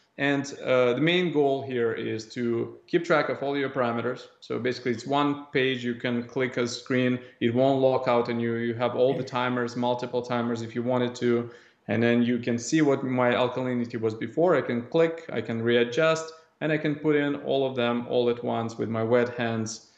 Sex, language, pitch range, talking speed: male, English, 120-140 Hz, 215 wpm